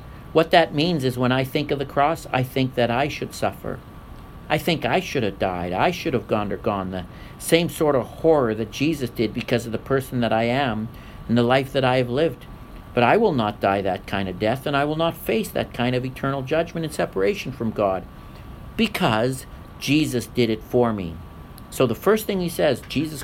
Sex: male